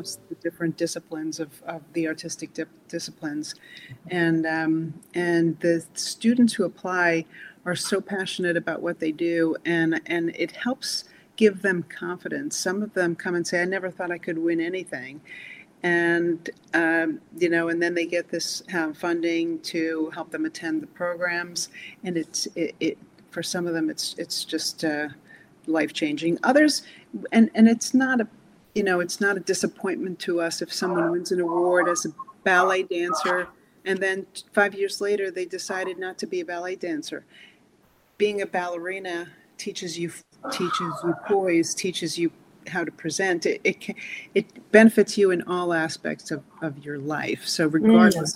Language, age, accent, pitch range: English, 40-59, American, 165-190 Hz